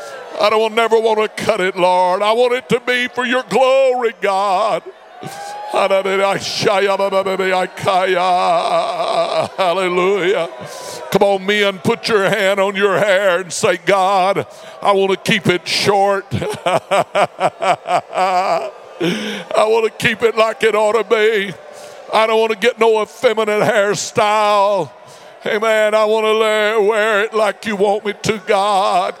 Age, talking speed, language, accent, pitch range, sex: 60-79, 135 wpm, English, American, 190-220 Hz, male